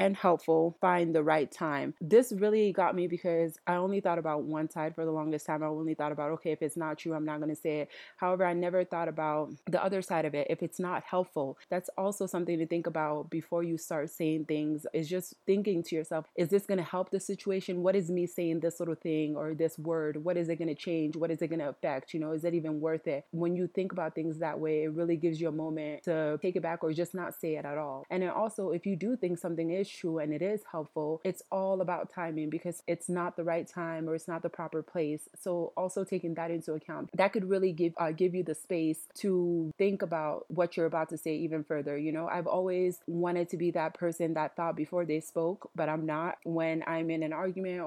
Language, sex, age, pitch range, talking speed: English, female, 20-39, 155-180 Hz, 255 wpm